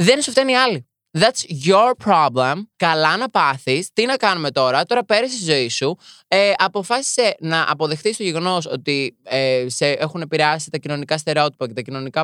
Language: Greek